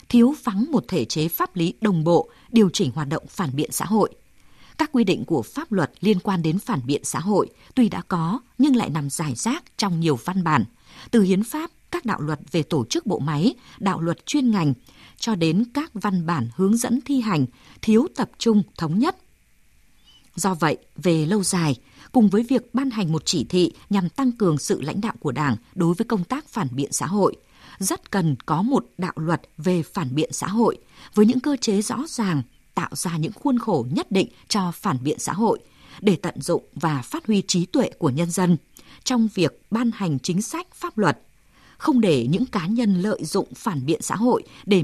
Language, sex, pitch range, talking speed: Vietnamese, female, 165-235 Hz, 215 wpm